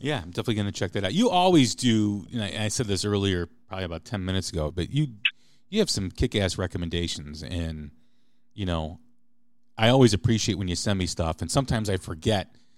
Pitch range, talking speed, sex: 95-125 Hz, 205 wpm, male